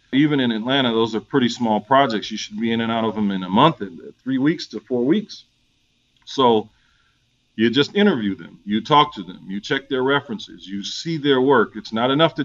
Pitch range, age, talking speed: 110-135 Hz, 40-59, 215 wpm